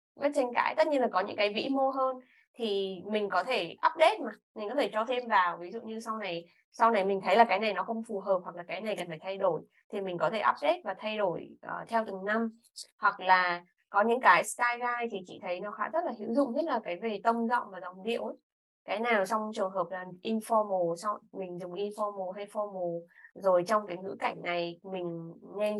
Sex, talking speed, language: female, 245 wpm, Vietnamese